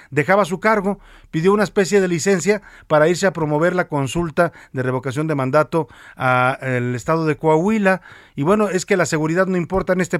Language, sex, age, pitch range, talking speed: Spanish, male, 40-59, 130-180 Hz, 190 wpm